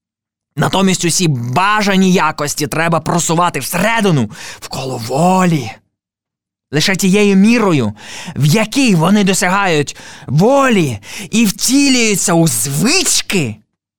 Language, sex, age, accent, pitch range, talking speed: Ukrainian, male, 20-39, native, 140-195 Hz, 90 wpm